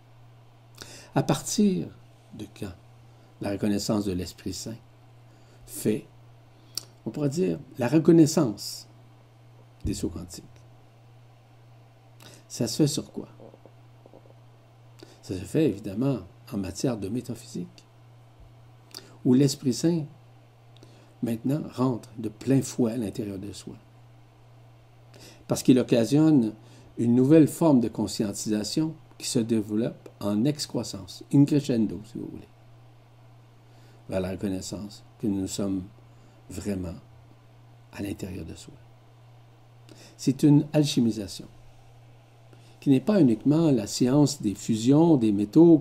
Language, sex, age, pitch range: French, male, 60-79, 110-120 Hz